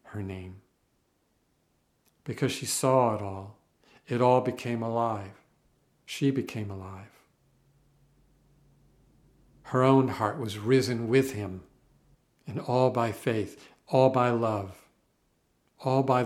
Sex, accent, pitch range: male, American, 105-130 Hz